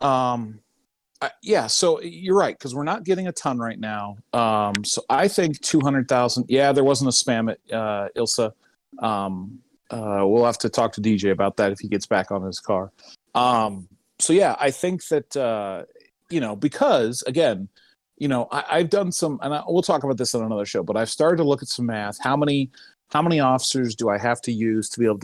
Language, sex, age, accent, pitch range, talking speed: English, male, 30-49, American, 110-140 Hz, 215 wpm